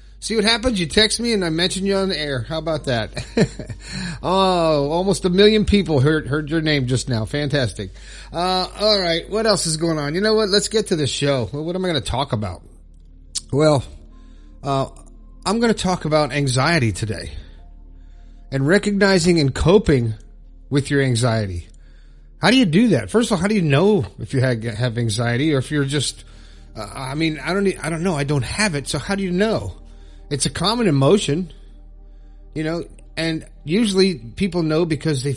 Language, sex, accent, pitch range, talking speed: English, male, American, 125-175 Hz, 200 wpm